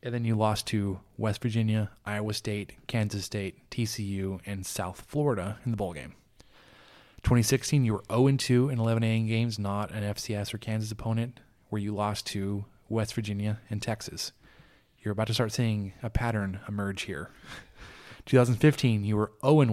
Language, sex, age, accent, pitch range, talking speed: English, male, 20-39, American, 100-115 Hz, 155 wpm